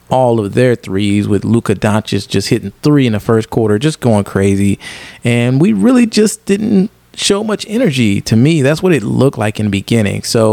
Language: English